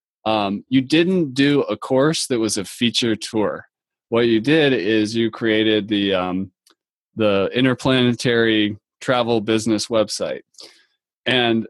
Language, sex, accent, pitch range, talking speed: English, male, American, 105-130 Hz, 130 wpm